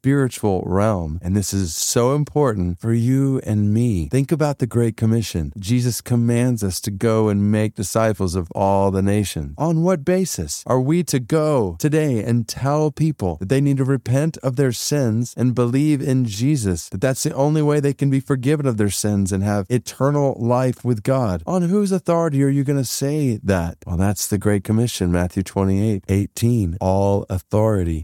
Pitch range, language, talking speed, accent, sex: 105-145 Hz, English, 190 wpm, American, male